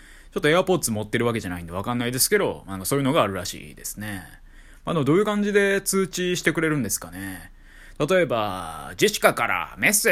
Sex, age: male, 20-39